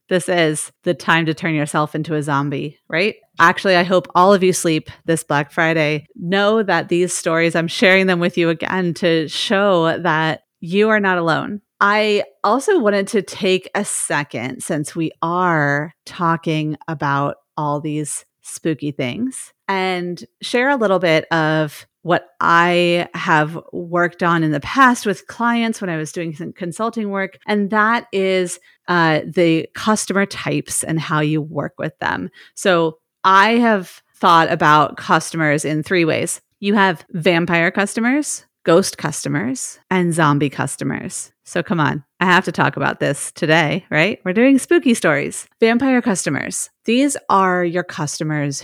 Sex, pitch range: female, 155-195 Hz